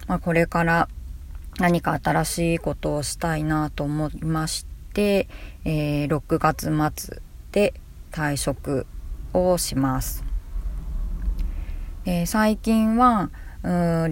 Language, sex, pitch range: Japanese, female, 140-170 Hz